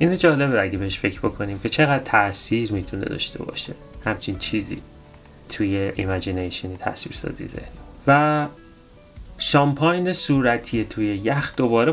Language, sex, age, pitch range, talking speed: Persian, male, 30-49, 100-135 Hz, 120 wpm